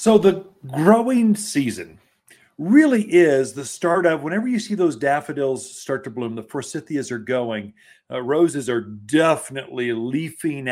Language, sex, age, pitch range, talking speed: English, male, 50-69, 130-190 Hz, 145 wpm